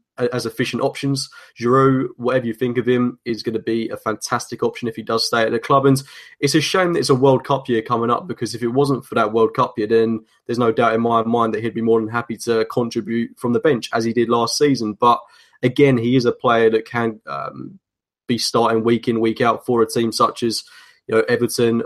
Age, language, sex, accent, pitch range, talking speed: 20-39, English, male, British, 115-130 Hz, 245 wpm